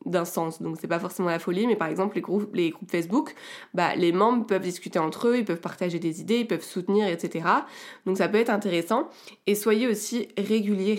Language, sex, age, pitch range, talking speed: French, female, 20-39, 185-230 Hz, 225 wpm